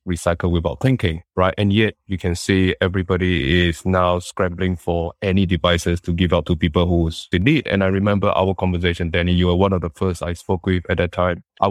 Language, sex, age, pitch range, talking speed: English, male, 20-39, 90-100 Hz, 220 wpm